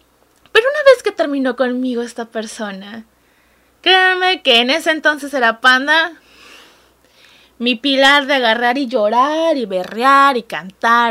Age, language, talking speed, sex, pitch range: 20-39, Spanish, 135 wpm, female, 230-310 Hz